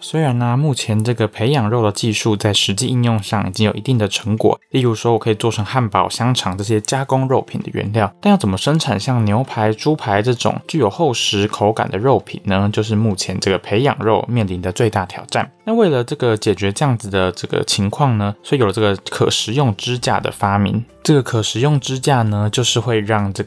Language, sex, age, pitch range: Chinese, male, 20-39, 105-130 Hz